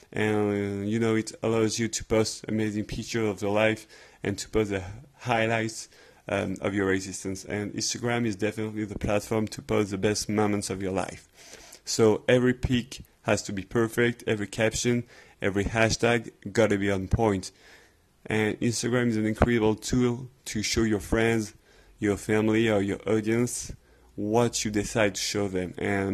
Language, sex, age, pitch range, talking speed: English, male, 30-49, 100-115 Hz, 170 wpm